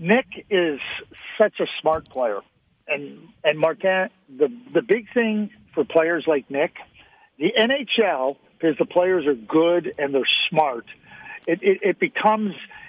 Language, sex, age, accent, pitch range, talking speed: French, male, 50-69, American, 160-205 Hz, 145 wpm